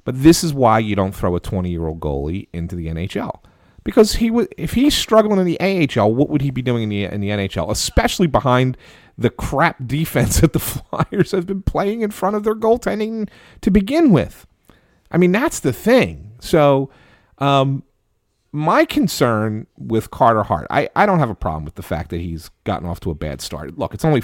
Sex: male